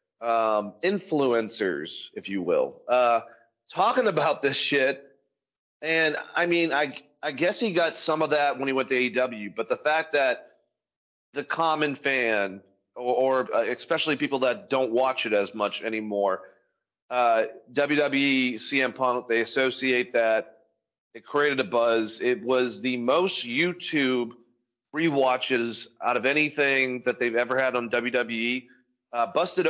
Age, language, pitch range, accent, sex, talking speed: 40-59, English, 115-140 Hz, American, male, 150 wpm